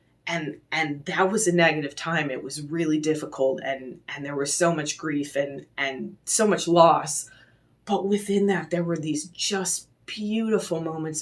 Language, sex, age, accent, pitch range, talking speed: English, female, 30-49, American, 150-190 Hz, 170 wpm